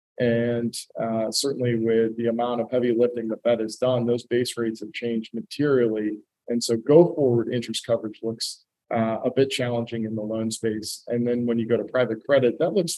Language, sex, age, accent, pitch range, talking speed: English, male, 40-59, American, 110-125 Hz, 200 wpm